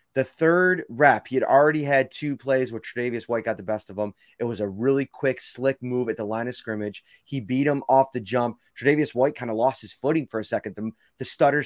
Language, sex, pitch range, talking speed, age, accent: English, male, 115-155 Hz, 245 wpm, 30-49, American